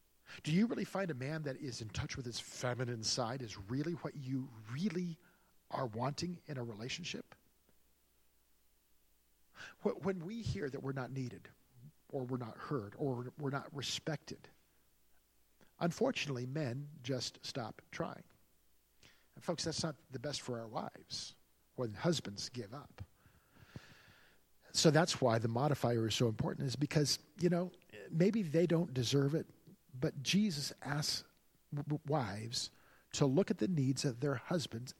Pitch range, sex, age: 120-160 Hz, male, 50-69